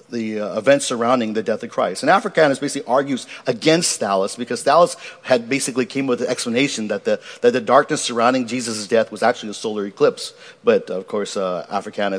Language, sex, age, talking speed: English, male, 50-69, 195 wpm